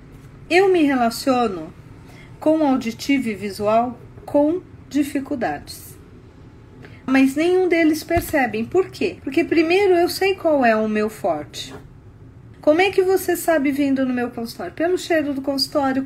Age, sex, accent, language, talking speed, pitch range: 40-59, female, Brazilian, Portuguese, 140 wpm, 225-310 Hz